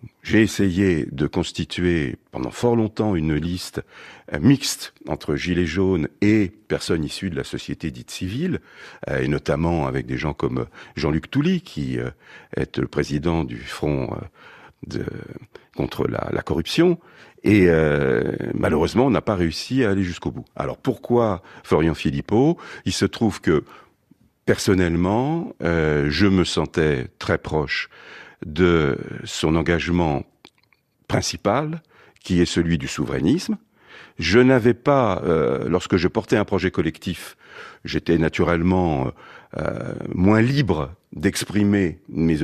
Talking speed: 135 wpm